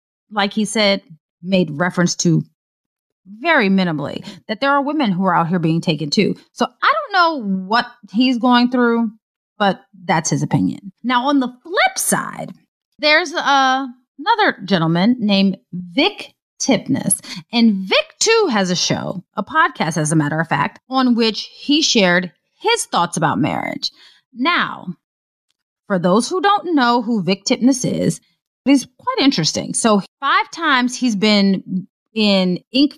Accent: American